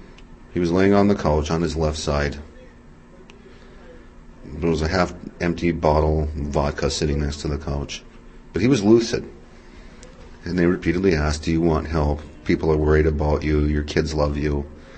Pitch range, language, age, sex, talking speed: 75-80 Hz, English, 40-59, male, 170 wpm